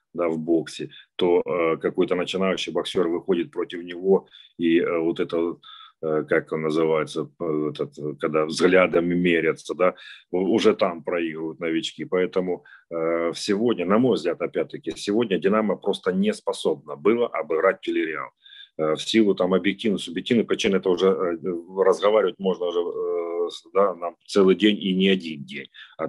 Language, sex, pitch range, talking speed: Ukrainian, male, 85-105 Hz, 155 wpm